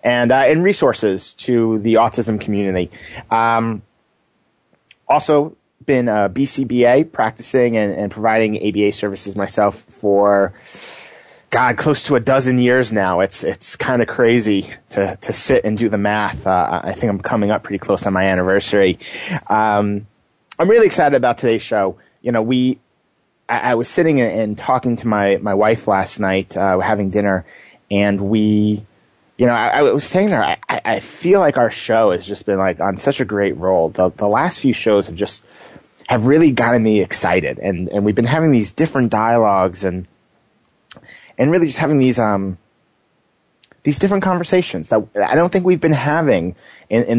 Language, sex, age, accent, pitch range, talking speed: English, male, 30-49, American, 100-130 Hz, 175 wpm